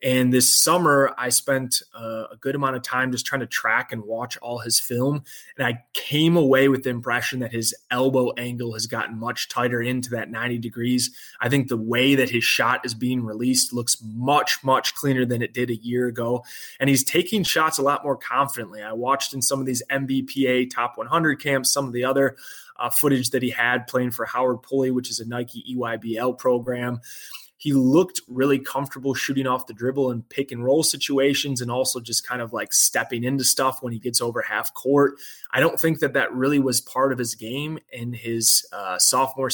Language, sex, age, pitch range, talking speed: English, male, 20-39, 120-140 Hz, 210 wpm